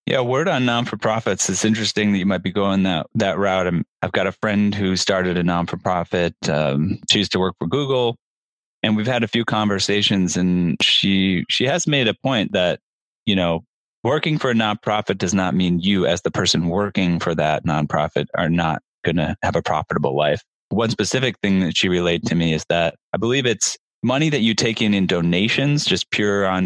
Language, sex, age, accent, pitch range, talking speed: English, male, 30-49, American, 85-105 Hz, 220 wpm